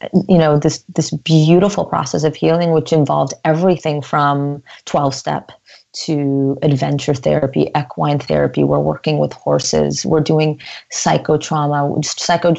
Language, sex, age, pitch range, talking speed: English, female, 30-49, 140-165 Hz, 125 wpm